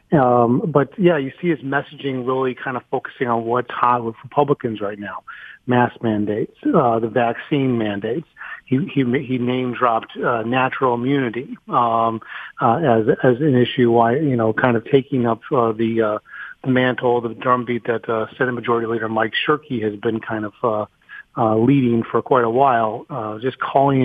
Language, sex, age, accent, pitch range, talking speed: English, male, 40-59, American, 115-135 Hz, 180 wpm